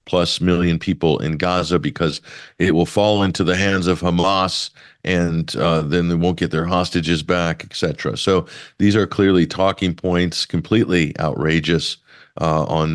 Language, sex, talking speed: English, male, 160 wpm